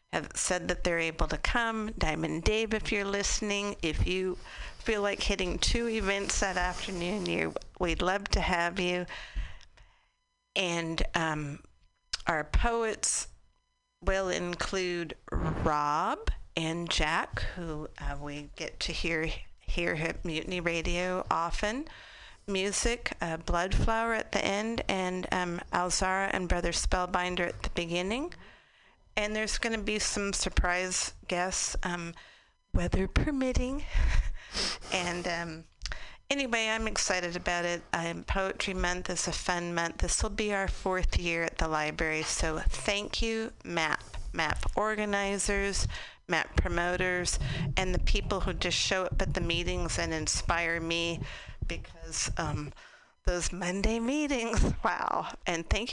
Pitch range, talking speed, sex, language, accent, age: 170-215 Hz, 130 wpm, female, English, American, 50-69